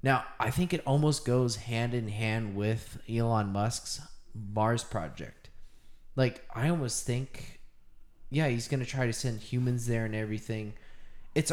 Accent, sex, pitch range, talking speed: American, male, 105-125 Hz, 150 wpm